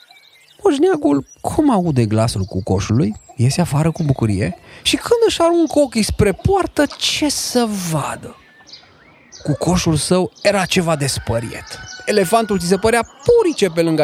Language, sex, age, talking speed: Romanian, male, 30-49, 140 wpm